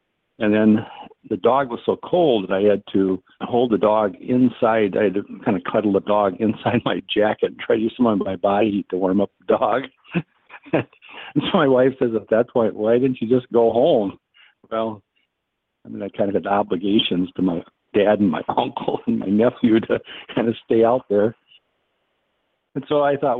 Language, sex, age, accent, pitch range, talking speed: English, male, 50-69, American, 105-125 Hz, 210 wpm